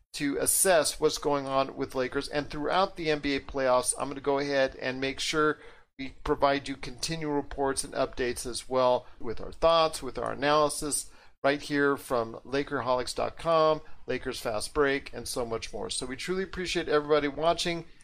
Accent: American